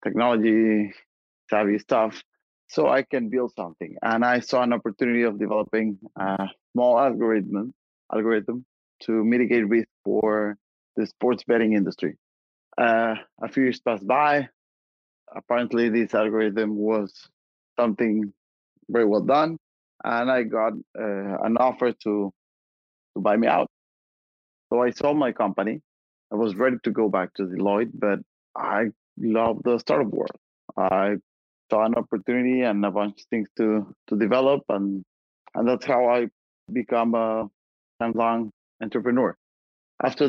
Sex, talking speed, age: male, 140 wpm, 30-49